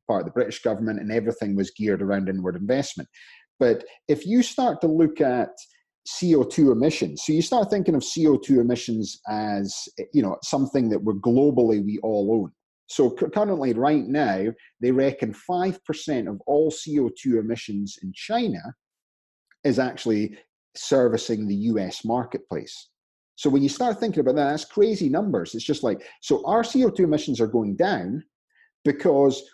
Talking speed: 160 wpm